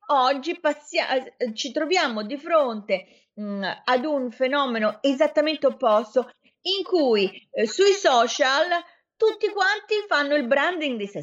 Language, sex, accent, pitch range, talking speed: Italian, female, native, 200-300 Hz, 120 wpm